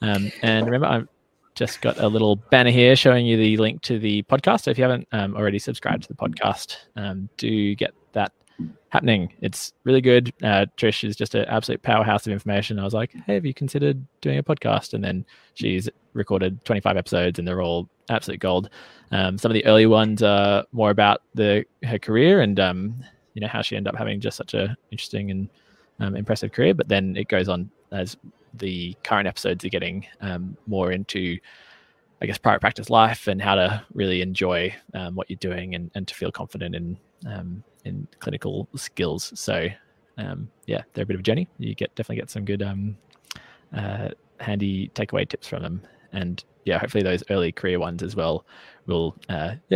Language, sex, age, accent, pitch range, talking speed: English, male, 20-39, Australian, 95-110 Hz, 200 wpm